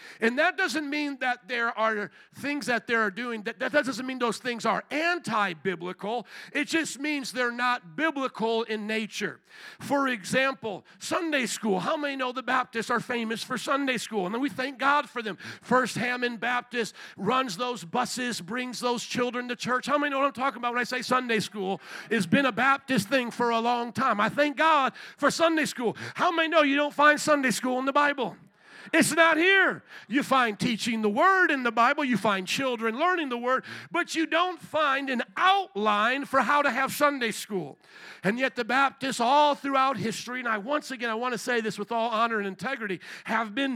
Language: English